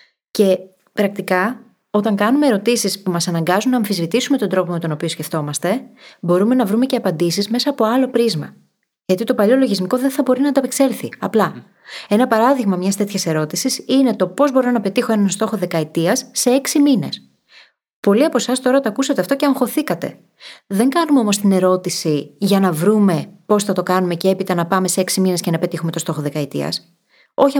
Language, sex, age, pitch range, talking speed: Greek, female, 30-49, 180-250 Hz, 190 wpm